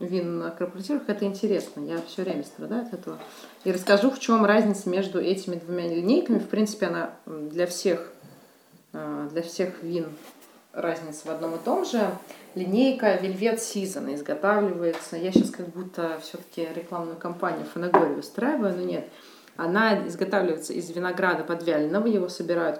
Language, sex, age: Russian, female, 30-49